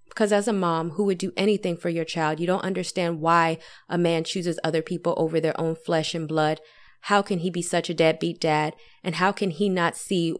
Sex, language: female, English